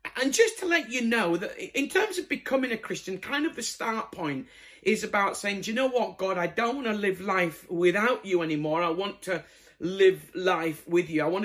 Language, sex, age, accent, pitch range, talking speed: English, male, 50-69, British, 170-250 Hz, 230 wpm